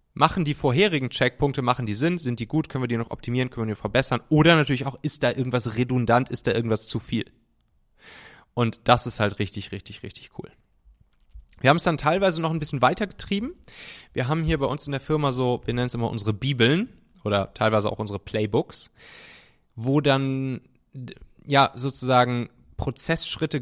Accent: German